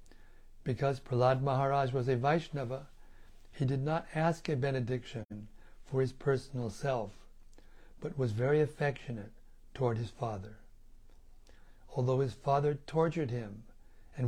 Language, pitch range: English, 105-140 Hz